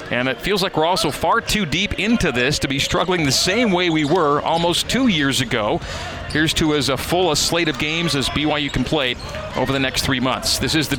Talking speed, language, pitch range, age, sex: 235 wpm, English, 130-155 Hz, 40-59, male